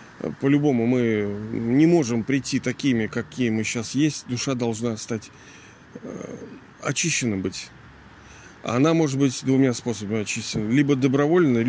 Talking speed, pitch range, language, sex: 120 wpm, 115-145 Hz, Russian, male